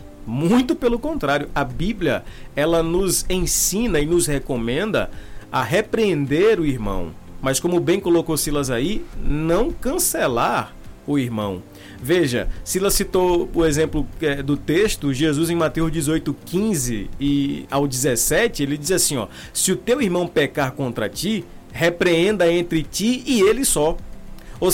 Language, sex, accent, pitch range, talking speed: Portuguese, male, Brazilian, 140-185 Hz, 140 wpm